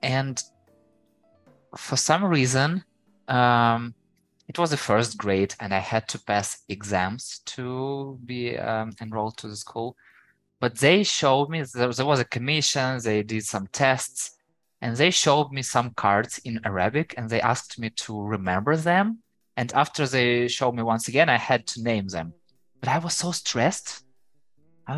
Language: English